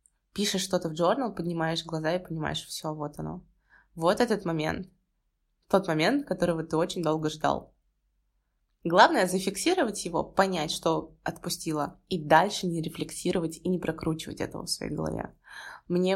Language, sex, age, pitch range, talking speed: Russian, female, 20-39, 155-180 Hz, 145 wpm